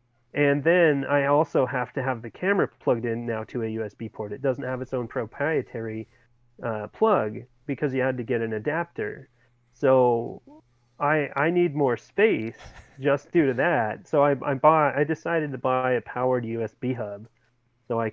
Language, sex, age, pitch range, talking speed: English, male, 30-49, 115-140 Hz, 180 wpm